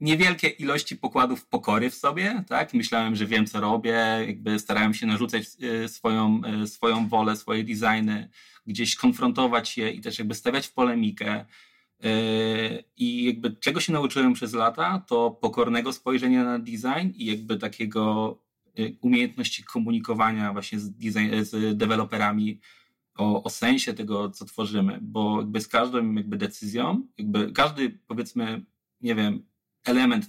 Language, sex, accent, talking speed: Polish, male, native, 135 wpm